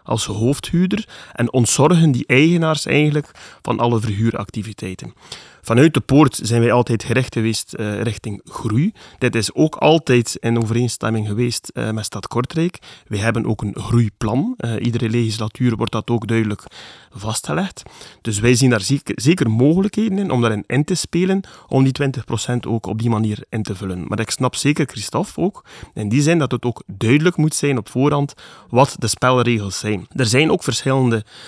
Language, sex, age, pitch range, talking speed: Dutch, male, 30-49, 110-135 Hz, 175 wpm